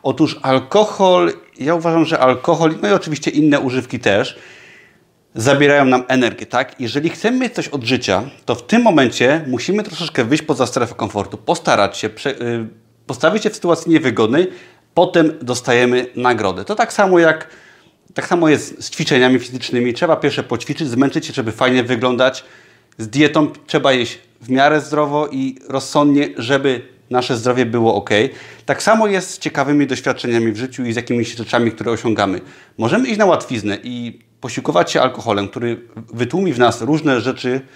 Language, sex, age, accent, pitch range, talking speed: Polish, male, 30-49, native, 120-155 Hz, 160 wpm